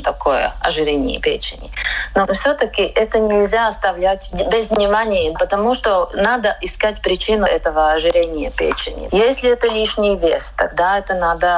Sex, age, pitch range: female, 30-49, 190-235 Hz